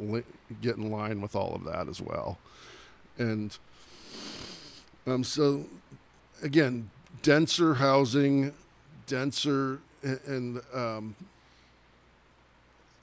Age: 50-69